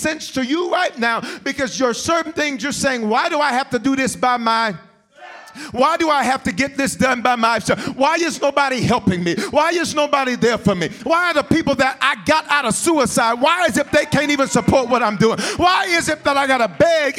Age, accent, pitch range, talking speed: 40-59, American, 210-310 Hz, 240 wpm